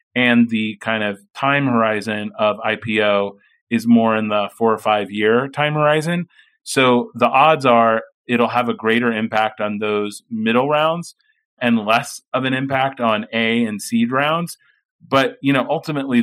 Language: English